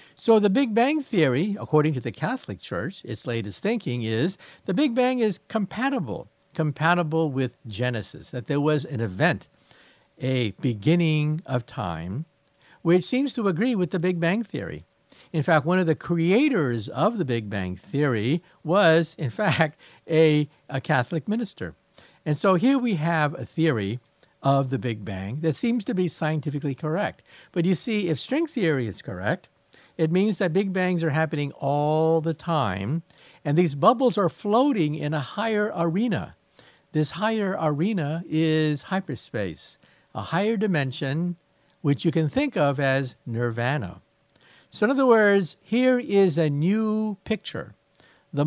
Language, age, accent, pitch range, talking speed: English, 50-69, American, 140-195 Hz, 155 wpm